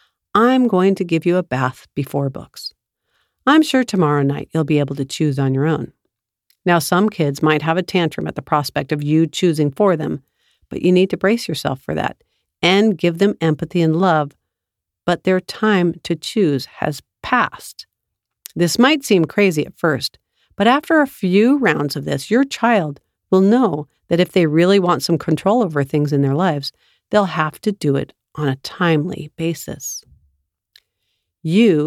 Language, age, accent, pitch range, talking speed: English, 50-69, American, 145-205 Hz, 180 wpm